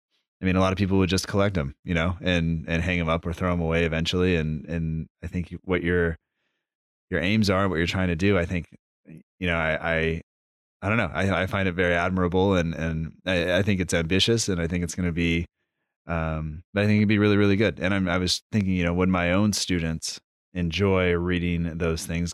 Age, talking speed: 30-49, 240 wpm